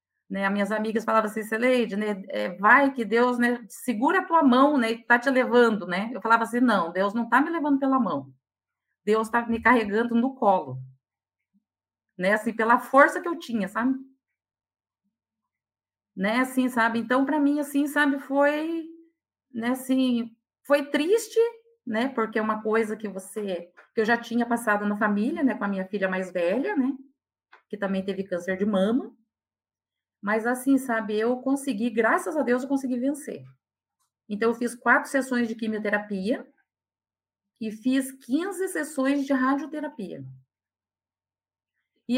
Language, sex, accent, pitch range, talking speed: Portuguese, female, Brazilian, 210-270 Hz, 160 wpm